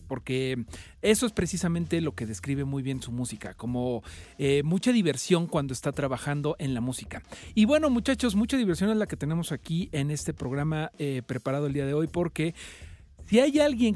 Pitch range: 130-175 Hz